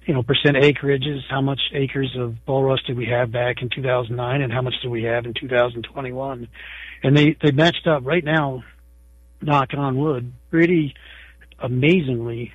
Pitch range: 120-140 Hz